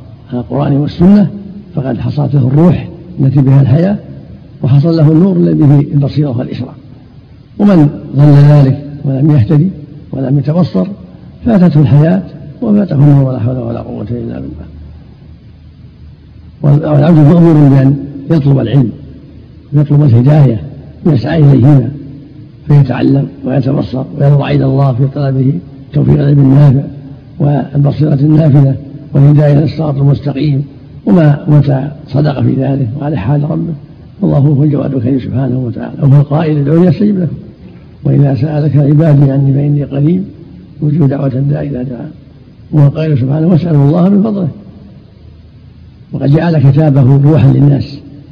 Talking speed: 125 wpm